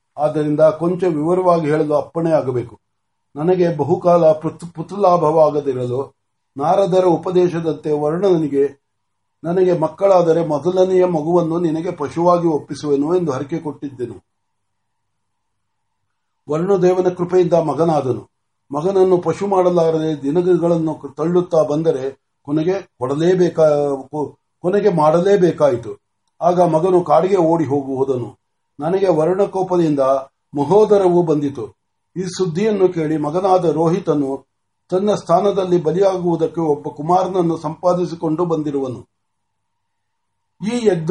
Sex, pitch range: male, 145-185 Hz